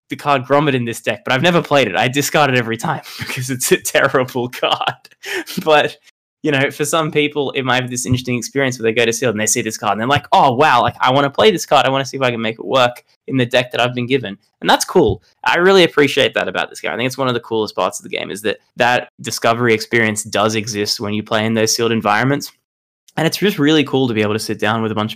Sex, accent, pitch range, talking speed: male, Australian, 105-130 Hz, 290 wpm